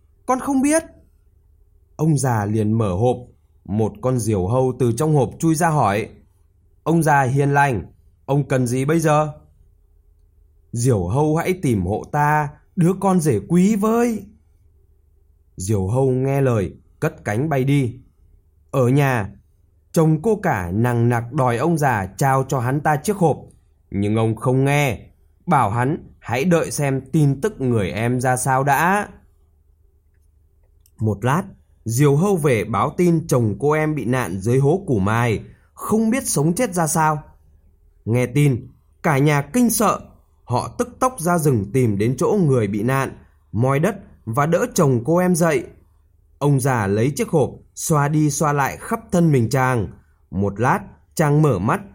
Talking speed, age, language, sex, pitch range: 165 wpm, 20-39, Vietnamese, male, 95-155 Hz